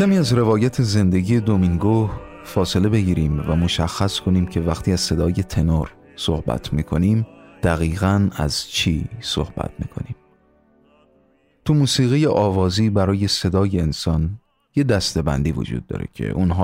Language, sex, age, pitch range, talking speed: Persian, male, 30-49, 85-105 Hz, 125 wpm